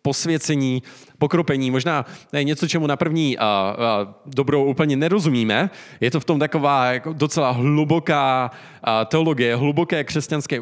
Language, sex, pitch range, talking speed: Czech, male, 120-155 Hz, 115 wpm